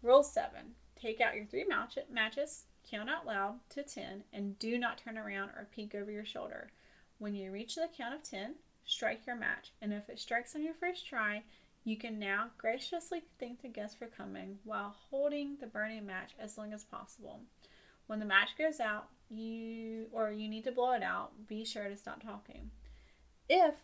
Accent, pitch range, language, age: American, 205-245 Hz, English, 30-49